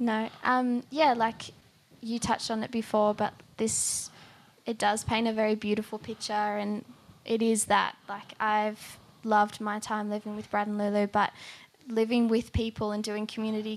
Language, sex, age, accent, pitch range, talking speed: English, female, 10-29, Australian, 210-225 Hz, 170 wpm